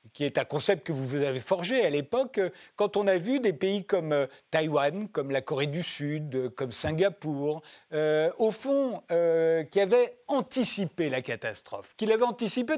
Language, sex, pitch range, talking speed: French, male, 155-220 Hz, 180 wpm